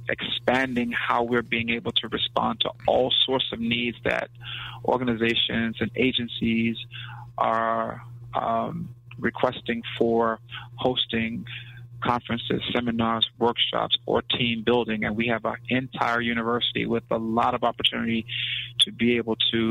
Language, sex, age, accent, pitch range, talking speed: English, male, 30-49, American, 115-120 Hz, 130 wpm